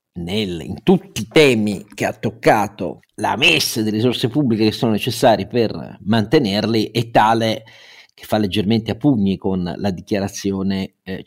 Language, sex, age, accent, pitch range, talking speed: Italian, male, 50-69, native, 100-125 Hz, 150 wpm